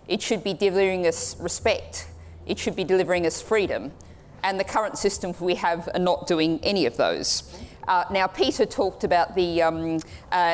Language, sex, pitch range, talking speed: English, female, 170-200 Hz, 180 wpm